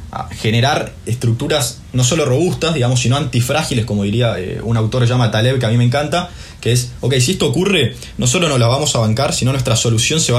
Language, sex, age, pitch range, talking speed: Spanish, male, 20-39, 105-135 Hz, 225 wpm